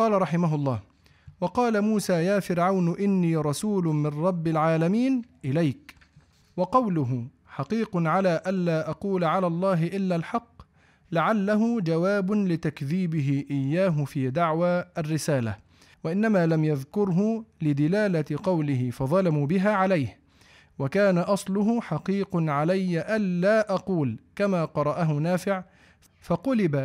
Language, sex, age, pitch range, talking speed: Arabic, male, 40-59, 150-200 Hz, 105 wpm